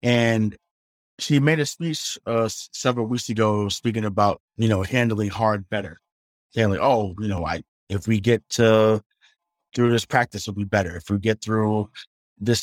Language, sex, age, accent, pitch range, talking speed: English, male, 20-39, American, 105-125 Hz, 175 wpm